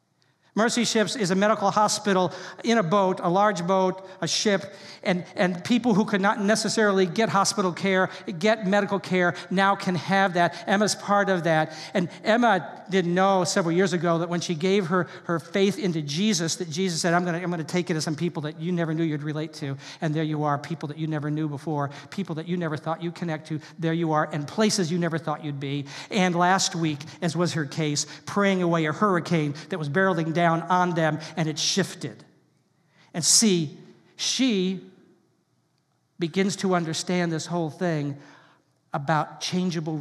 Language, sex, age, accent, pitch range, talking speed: English, male, 50-69, American, 155-190 Hz, 195 wpm